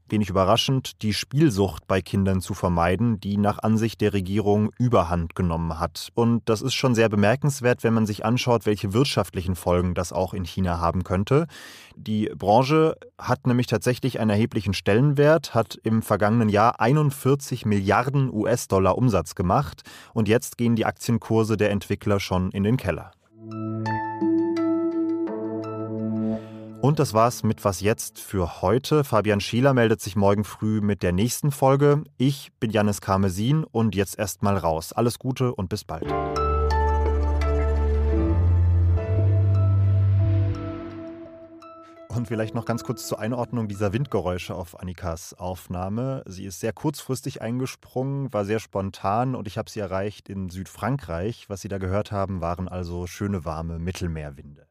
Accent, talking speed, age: German, 145 wpm, 30-49